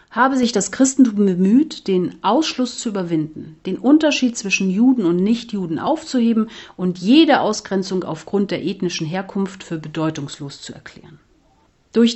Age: 40-59